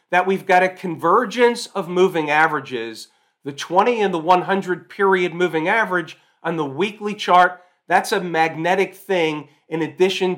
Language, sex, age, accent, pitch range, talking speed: English, male, 40-59, American, 160-200 Hz, 150 wpm